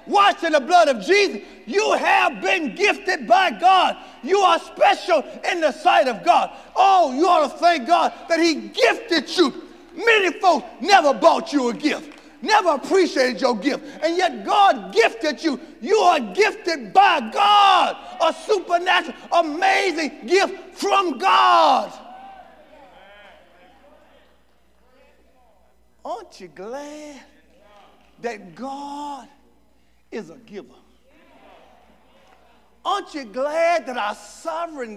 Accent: American